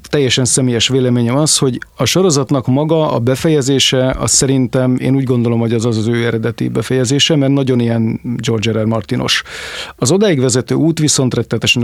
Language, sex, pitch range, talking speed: Hungarian, male, 115-140 Hz, 175 wpm